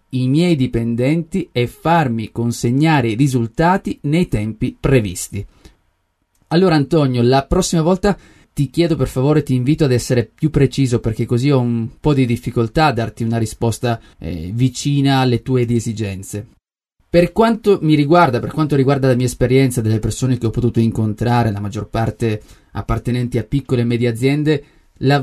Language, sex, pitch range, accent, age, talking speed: Italian, male, 115-155 Hz, native, 30-49, 160 wpm